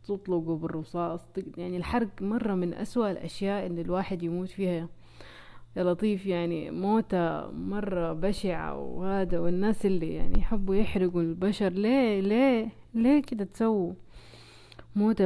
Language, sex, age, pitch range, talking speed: Arabic, female, 30-49, 165-200 Hz, 120 wpm